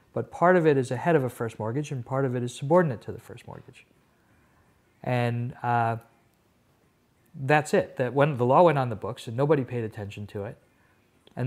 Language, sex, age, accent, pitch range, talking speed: English, male, 50-69, American, 115-140 Hz, 205 wpm